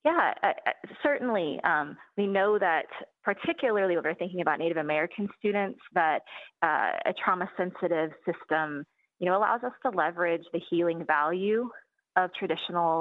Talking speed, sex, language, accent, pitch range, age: 145 wpm, female, English, American, 155-200 Hz, 20-39